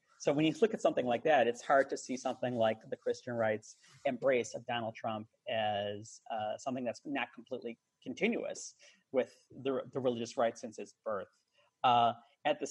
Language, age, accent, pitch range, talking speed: English, 30-49, American, 115-135 Hz, 185 wpm